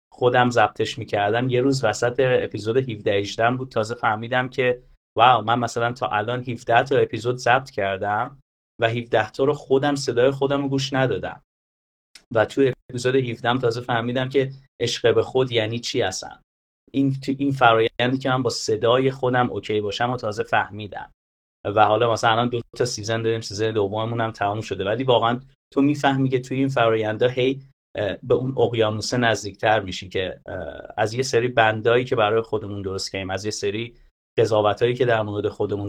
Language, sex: Persian, male